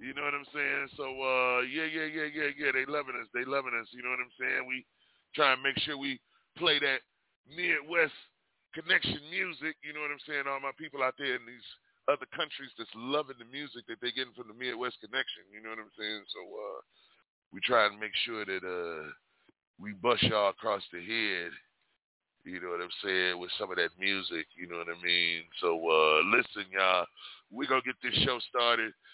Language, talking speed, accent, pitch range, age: English, 215 wpm, American, 105-150 Hz, 30-49